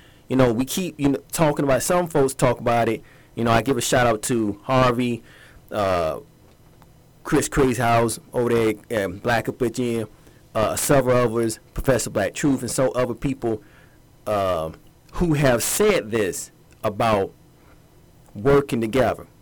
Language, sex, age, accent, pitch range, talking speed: English, male, 30-49, American, 115-145 Hz, 150 wpm